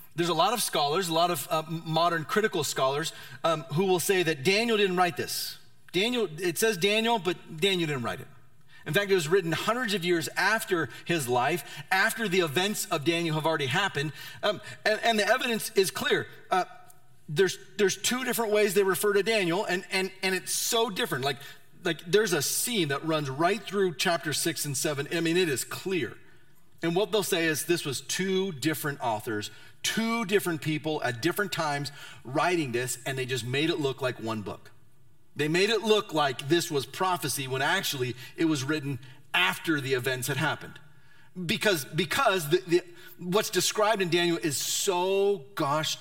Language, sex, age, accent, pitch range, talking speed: English, male, 40-59, American, 140-195 Hz, 190 wpm